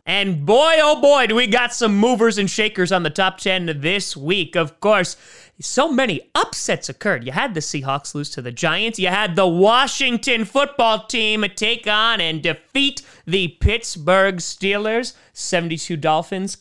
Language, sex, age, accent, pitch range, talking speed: English, male, 30-49, American, 165-240 Hz, 165 wpm